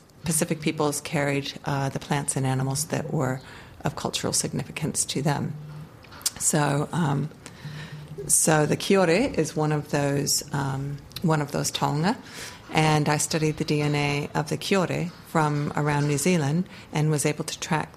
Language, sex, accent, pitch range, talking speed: English, female, American, 145-160 Hz, 155 wpm